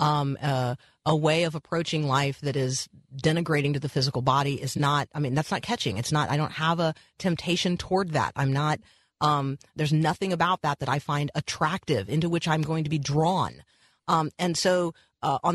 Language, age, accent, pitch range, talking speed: English, 40-59, American, 145-175 Hz, 215 wpm